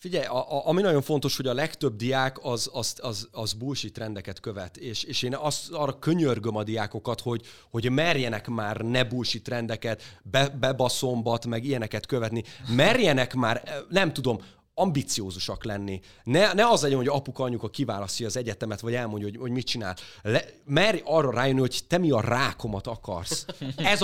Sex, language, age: male, Hungarian, 30-49